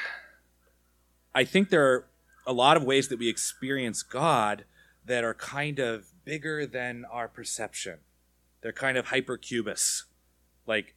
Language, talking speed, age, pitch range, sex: English, 135 wpm, 30-49, 100-135 Hz, male